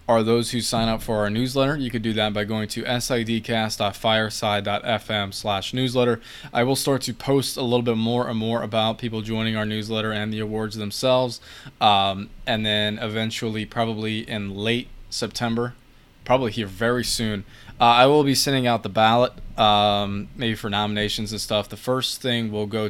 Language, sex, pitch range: English, male, 105-120 Hz